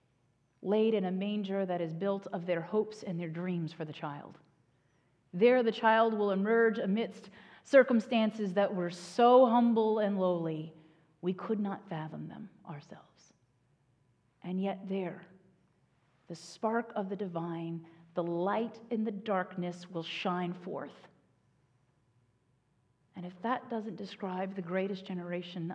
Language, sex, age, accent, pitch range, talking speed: English, female, 40-59, American, 155-200 Hz, 135 wpm